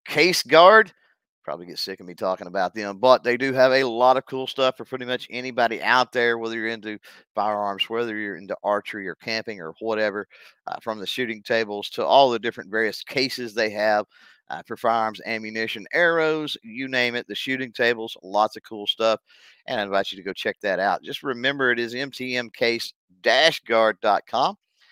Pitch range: 105-130 Hz